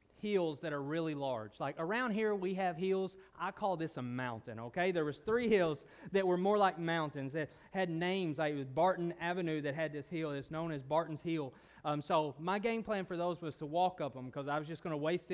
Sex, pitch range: male, 145-180 Hz